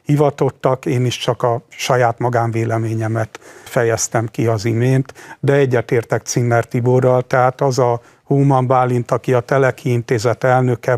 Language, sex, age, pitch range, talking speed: Hungarian, male, 50-69, 120-140 Hz, 130 wpm